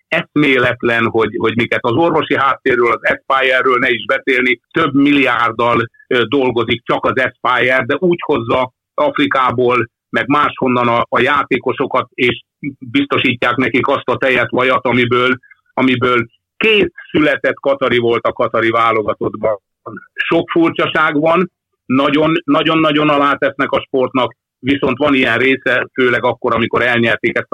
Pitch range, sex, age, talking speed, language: 115-140 Hz, male, 60-79, 130 wpm, Hungarian